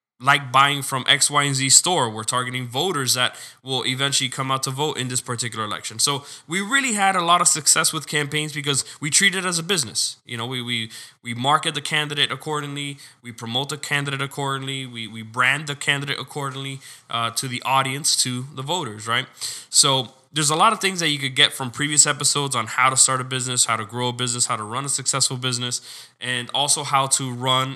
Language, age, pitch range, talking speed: English, 20-39, 125-145 Hz, 220 wpm